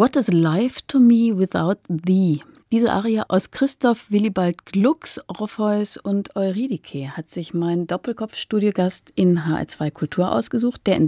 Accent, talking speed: German, 140 wpm